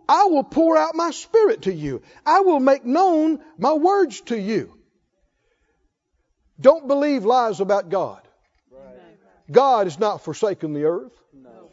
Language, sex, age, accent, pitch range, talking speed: English, male, 50-69, American, 220-330 Hz, 140 wpm